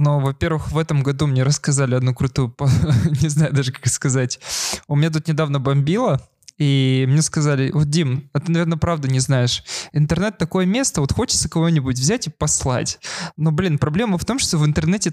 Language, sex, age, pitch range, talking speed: Russian, male, 20-39, 135-170 Hz, 185 wpm